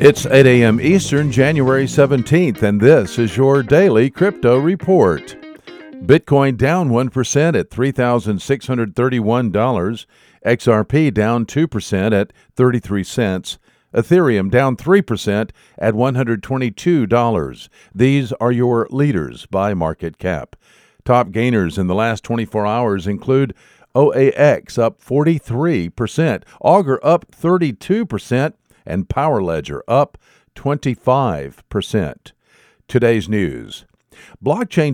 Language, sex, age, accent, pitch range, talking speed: English, male, 50-69, American, 115-145 Hz, 95 wpm